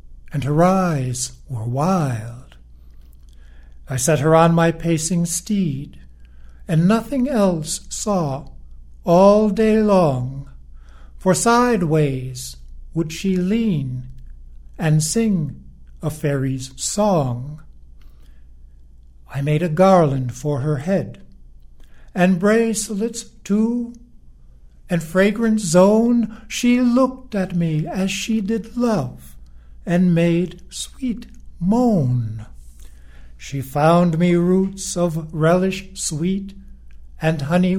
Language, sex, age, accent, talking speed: English, male, 60-79, American, 100 wpm